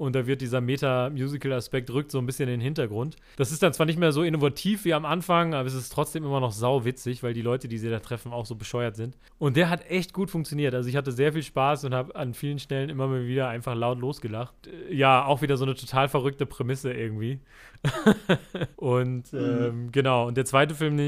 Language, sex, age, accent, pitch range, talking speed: German, male, 30-49, German, 125-150 Hz, 230 wpm